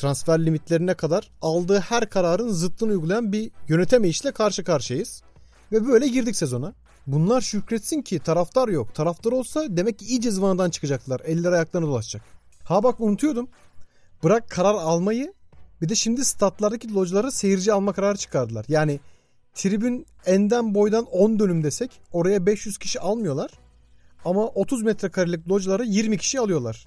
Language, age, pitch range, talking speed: Turkish, 40-59, 160-215 Hz, 145 wpm